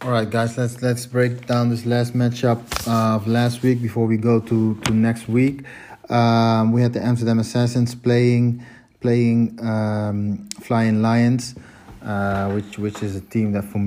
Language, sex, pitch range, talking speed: English, male, 100-120 Hz, 170 wpm